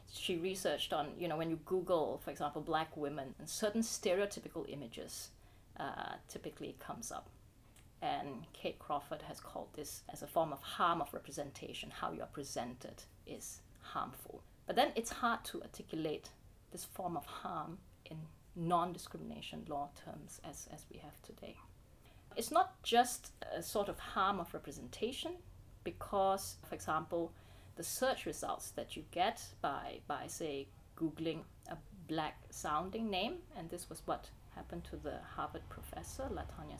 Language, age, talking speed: English, 30-49, 150 wpm